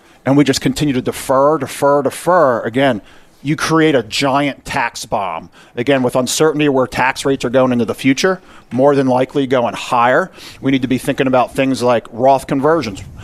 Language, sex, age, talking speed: English, male, 40-59, 185 wpm